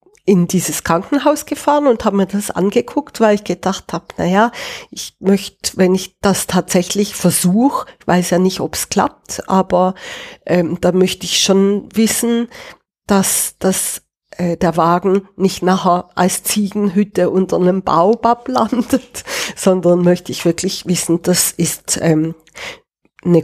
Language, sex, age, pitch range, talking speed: German, female, 40-59, 180-245 Hz, 145 wpm